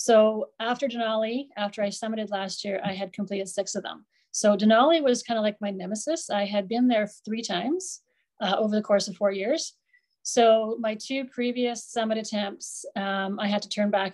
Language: English